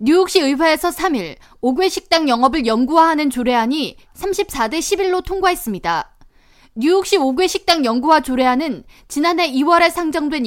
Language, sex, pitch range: Korean, female, 255-350 Hz